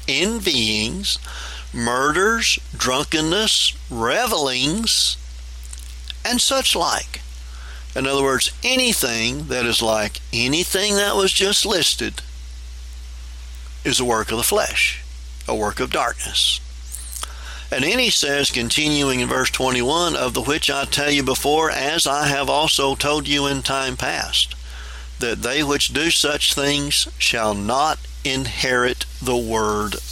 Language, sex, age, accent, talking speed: English, male, 50-69, American, 130 wpm